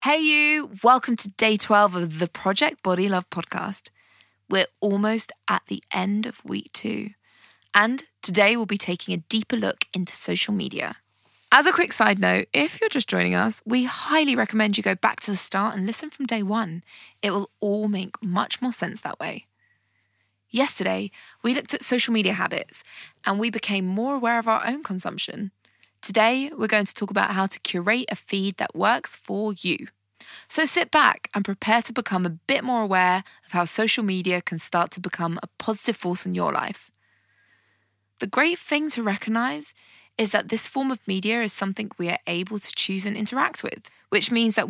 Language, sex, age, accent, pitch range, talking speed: English, female, 20-39, British, 185-235 Hz, 195 wpm